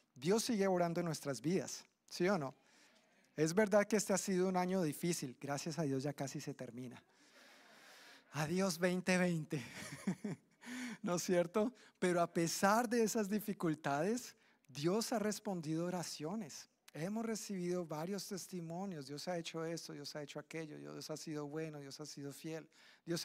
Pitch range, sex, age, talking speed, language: 150-190 Hz, male, 40-59, 155 wpm, Spanish